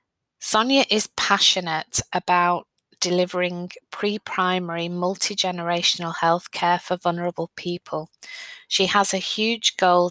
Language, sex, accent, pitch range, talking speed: English, female, British, 170-185 Hz, 95 wpm